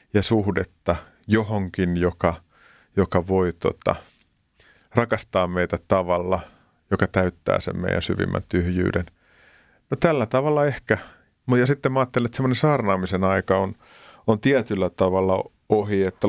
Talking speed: 125 wpm